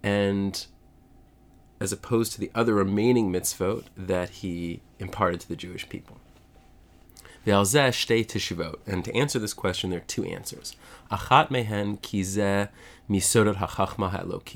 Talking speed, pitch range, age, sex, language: 105 wpm, 90-115 Hz, 30-49, male, English